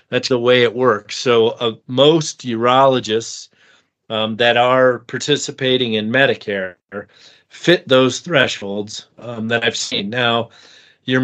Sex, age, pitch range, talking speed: male, 40-59, 115-140 Hz, 130 wpm